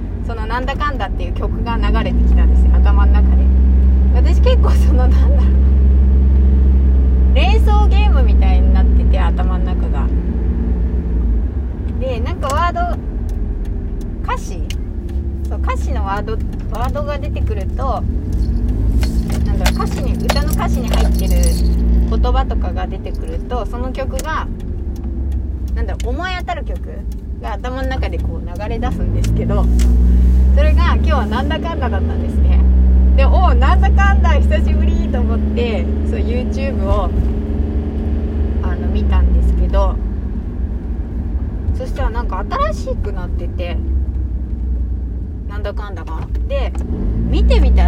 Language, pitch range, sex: Japanese, 65-80 Hz, female